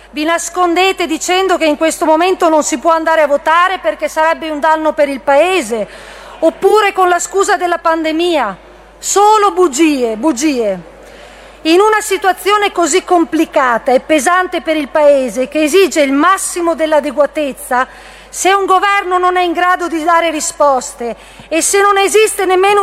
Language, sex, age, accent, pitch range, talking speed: Italian, female, 40-59, native, 295-370 Hz, 155 wpm